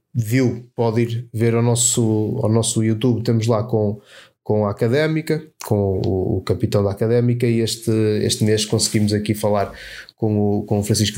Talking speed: 165 wpm